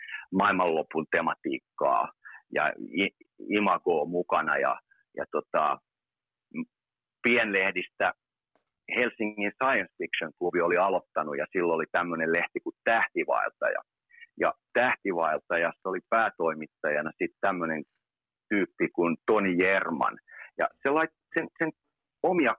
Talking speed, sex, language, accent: 90 wpm, male, Finnish, native